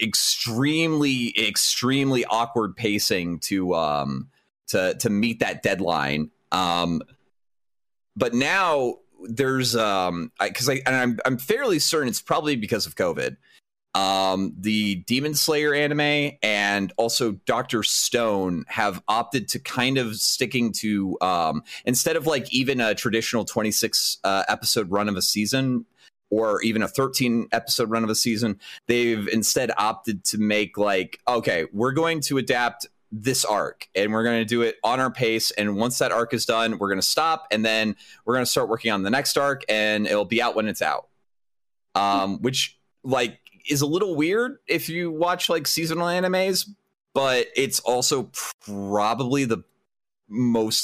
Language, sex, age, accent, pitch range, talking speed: English, male, 30-49, American, 105-135 Hz, 160 wpm